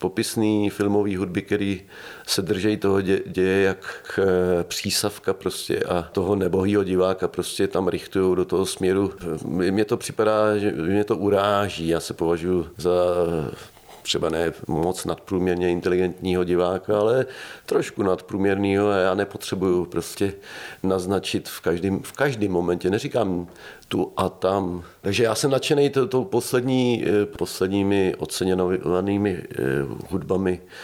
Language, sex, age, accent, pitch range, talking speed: Czech, male, 40-59, native, 85-100 Hz, 130 wpm